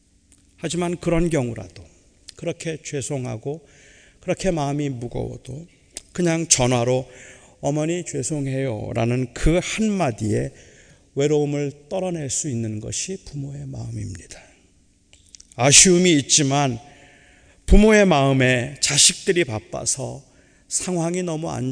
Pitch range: 95-150 Hz